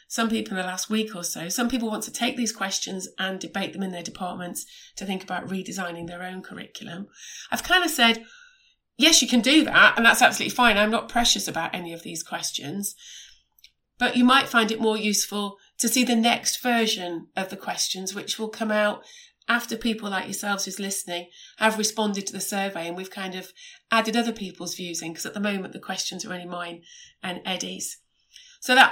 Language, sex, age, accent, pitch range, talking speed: English, female, 30-49, British, 185-230 Hz, 210 wpm